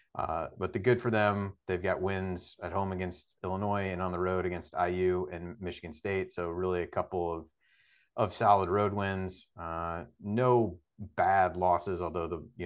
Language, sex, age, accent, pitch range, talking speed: English, male, 30-49, American, 90-100 Hz, 180 wpm